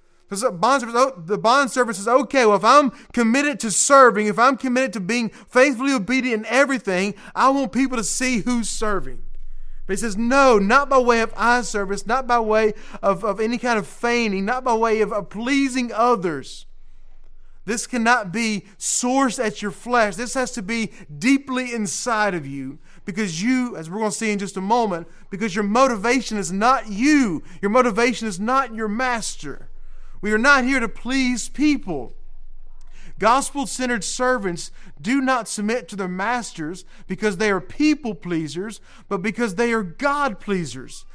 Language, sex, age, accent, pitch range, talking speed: English, male, 30-49, American, 200-255 Hz, 170 wpm